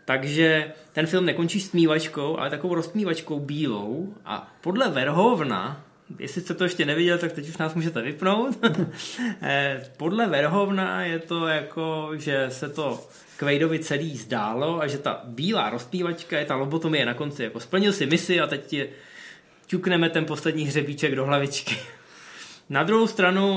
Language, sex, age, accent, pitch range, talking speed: Czech, male, 20-39, native, 145-185 Hz, 155 wpm